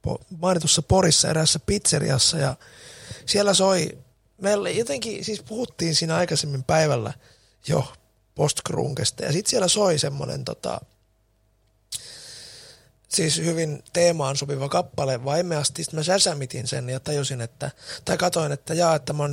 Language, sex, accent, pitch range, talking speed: Finnish, male, native, 130-170 Hz, 130 wpm